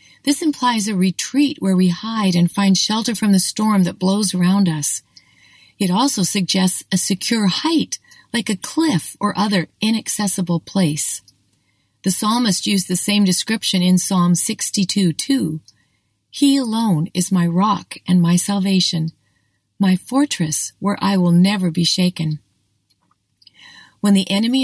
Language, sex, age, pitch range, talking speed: English, female, 40-59, 170-220 Hz, 145 wpm